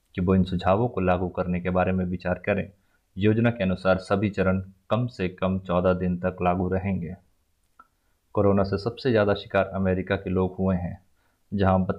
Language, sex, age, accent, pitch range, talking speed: Hindi, male, 20-39, native, 90-95 Hz, 175 wpm